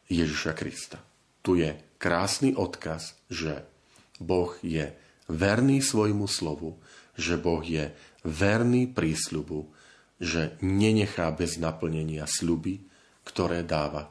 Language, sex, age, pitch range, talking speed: Slovak, male, 40-59, 80-105 Hz, 100 wpm